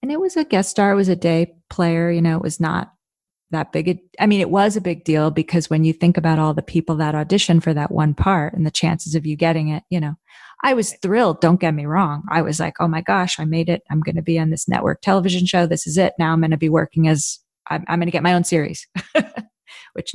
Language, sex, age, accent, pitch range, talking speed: English, female, 30-49, American, 160-190 Hz, 270 wpm